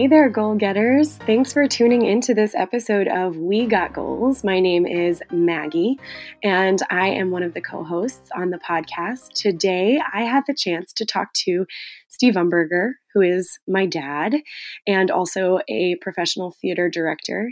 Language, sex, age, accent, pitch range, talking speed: English, female, 20-39, American, 175-200 Hz, 160 wpm